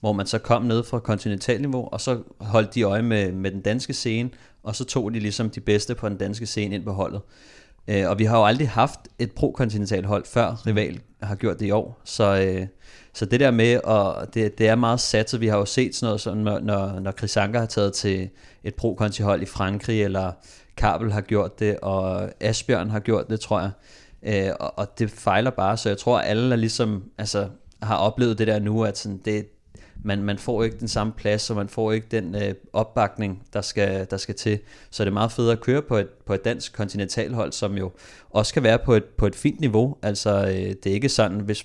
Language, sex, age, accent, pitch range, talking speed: Danish, male, 30-49, native, 100-115 Hz, 225 wpm